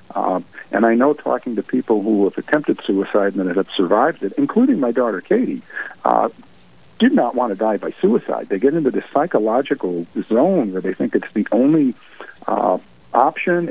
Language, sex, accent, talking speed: English, male, American, 185 wpm